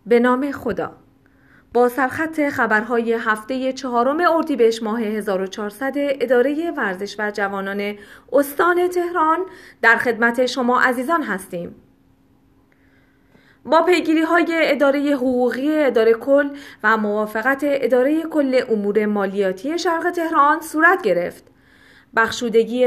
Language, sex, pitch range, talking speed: Persian, female, 220-290 Hz, 105 wpm